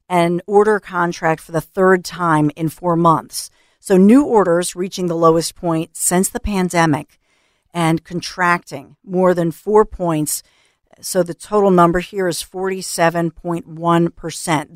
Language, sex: English, female